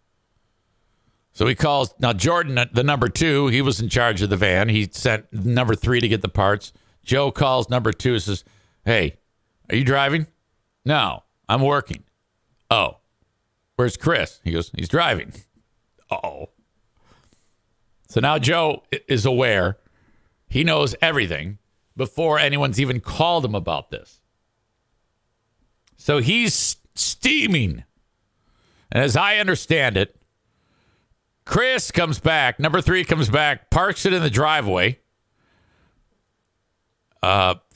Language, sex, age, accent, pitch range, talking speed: English, male, 50-69, American, 110-170 Hz, 125 wpm